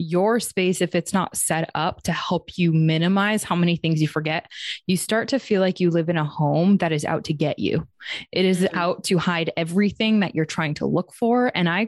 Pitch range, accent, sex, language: 160-195 Hz, American, female, English